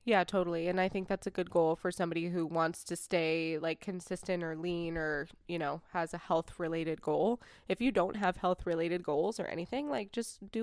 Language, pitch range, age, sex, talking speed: English, 170-200 Hz, 20-39, female, 220 wpm